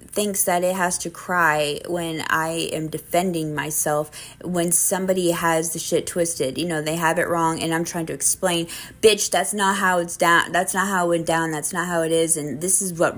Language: English